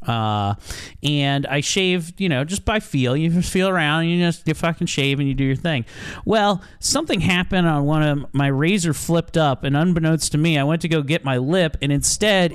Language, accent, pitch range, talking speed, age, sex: English, American, 140-185 Hz, 230 wpm, 30-49, male